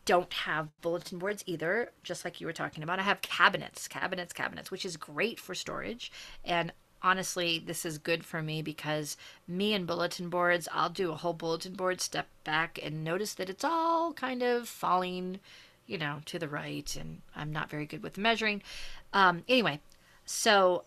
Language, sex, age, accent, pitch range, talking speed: English, female, 40-59, American, 155-190 Hz, 185 wpm